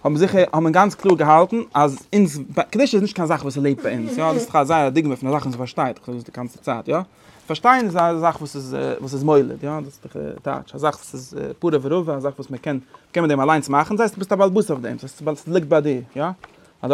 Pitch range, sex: 135-175 Hz, male